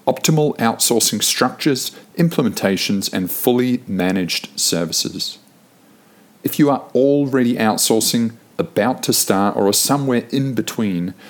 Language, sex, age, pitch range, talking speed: English, male, 50-69, 105-140 Hz, 105 wpm